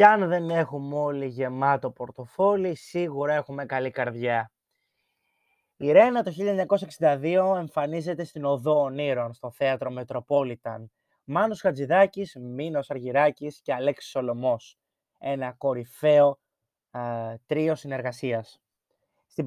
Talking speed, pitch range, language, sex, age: 110 wpm, 140-185 Hz, Greek, male, 20-39